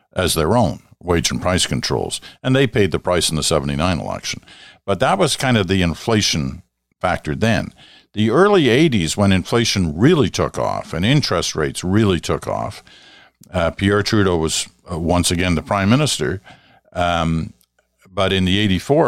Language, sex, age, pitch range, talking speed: English, male, 50-69, 80-100 Hz, 170 wpm